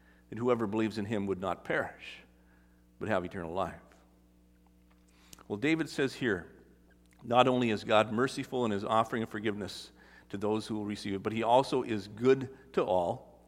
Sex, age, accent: male, 50-69, American